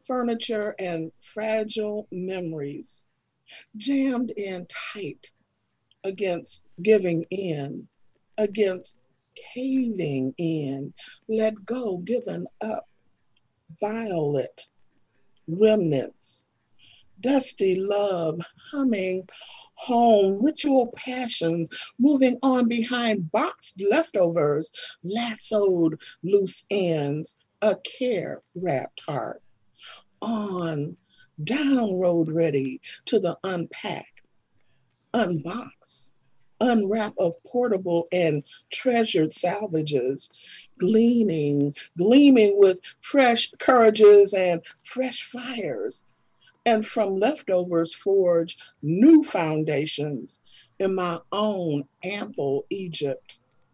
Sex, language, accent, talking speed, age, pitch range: female, English, American, 75 wpm, 50-69, 165-235 Hz